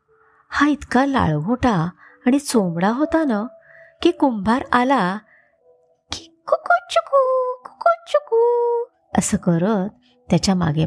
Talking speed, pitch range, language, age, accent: 110 wpm, 175-285 Hz, Marathi, 20-39, native